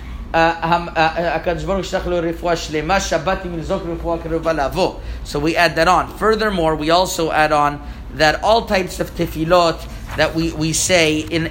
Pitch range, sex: 155-185 Hz, male